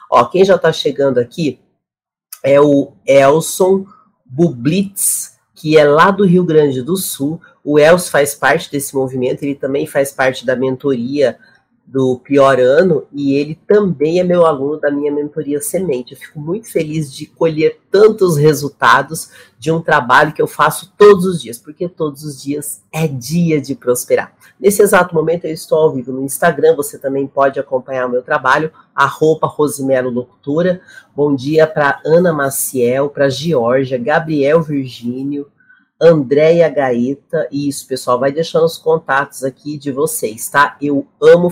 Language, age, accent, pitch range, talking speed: Portuguese, 30-49, Brazilian, 135-165 Hz, 160 wpm